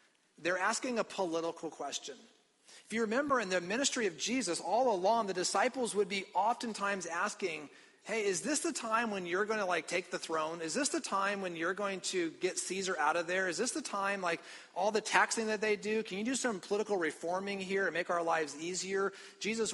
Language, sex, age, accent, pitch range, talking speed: English, male, 40-59, American, 165-215 Hz, 215 wpm